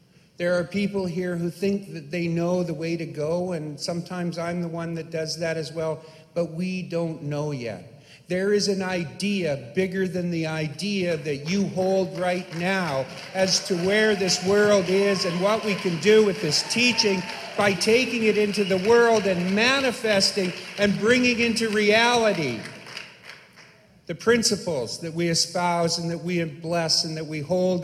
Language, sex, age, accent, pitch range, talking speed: English, male, 50-69, American, 160-205 Hz, 170 wpm